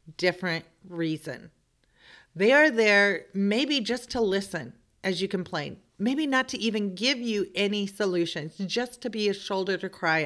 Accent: American